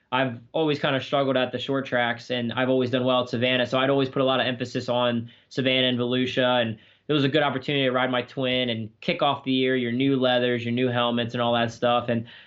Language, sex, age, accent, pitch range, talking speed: English, male, 20-39, American, 115-140 Hz, 260 wpm